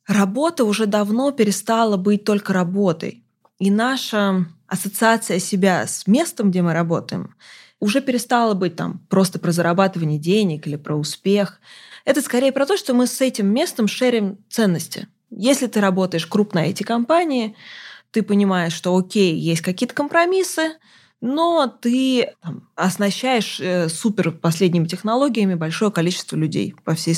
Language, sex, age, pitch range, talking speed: Russian, female, 20-39, 175-225 Hz, 140 wpm